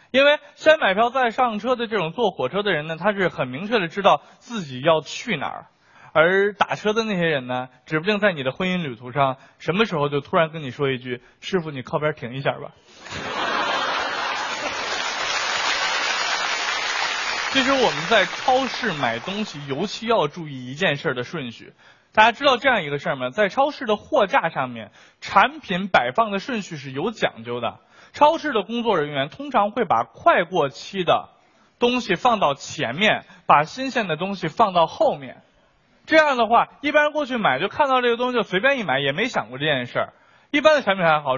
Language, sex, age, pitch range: Chinese, male, 20-39, 160-250 Hz